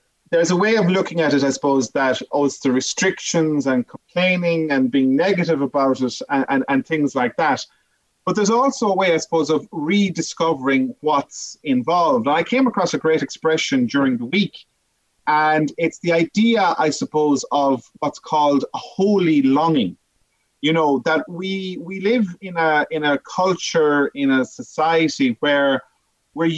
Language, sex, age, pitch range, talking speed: English, male, 30-49, 140-195 Hz, 175 wpm